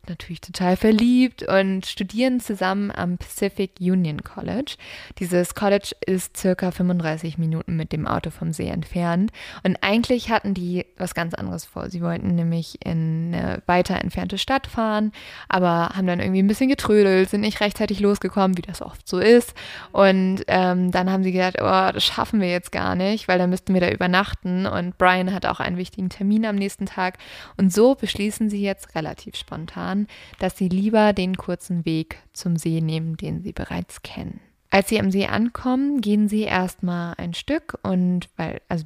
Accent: German